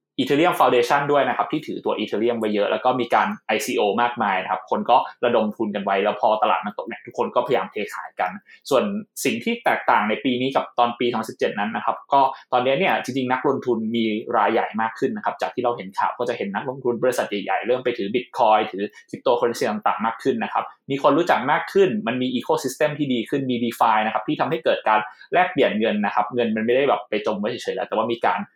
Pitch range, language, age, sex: 110-145 Hz, Thai, 20-39, male